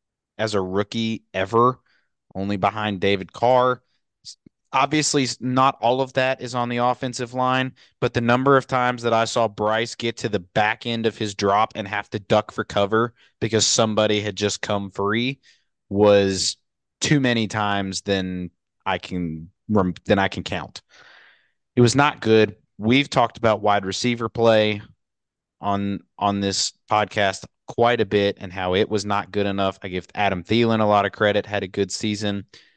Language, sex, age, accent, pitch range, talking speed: English, male, 30-49, American, 100-120 Hz, 170 wpm